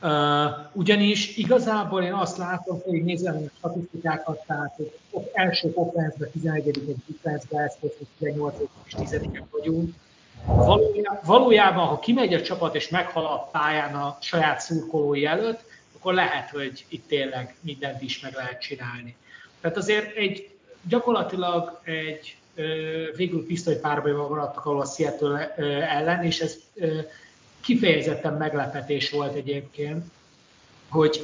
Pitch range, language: 145-170 Hz, Hungarian